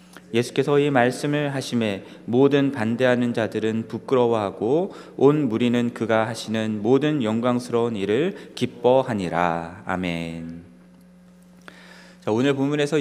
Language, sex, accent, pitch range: Korean, male, native, 110-155 Hz